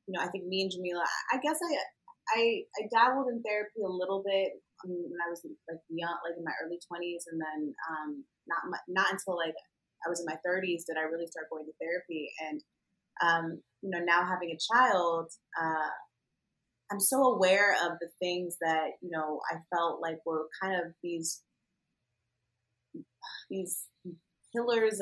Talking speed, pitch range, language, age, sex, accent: 175 wpm, 165-195 Hz, English, 20-39, female, American